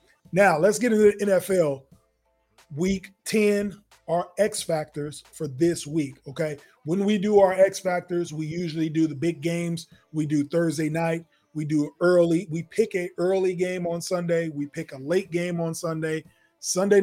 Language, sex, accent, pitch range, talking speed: English, male, American, 155-185 Hz, 175 wpm